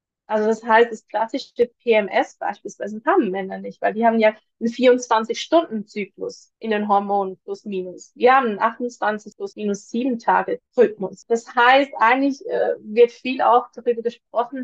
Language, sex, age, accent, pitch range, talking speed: German, female, 20-39, German, 210-245 Hz, 160 wpm